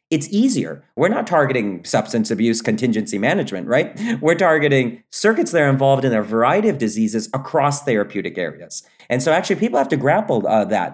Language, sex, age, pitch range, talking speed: English, male, 30-49, 120-165 Hz, 180 wpm